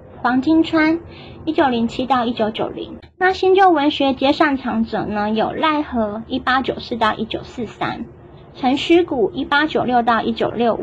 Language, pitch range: Chinese, 230-305 Hz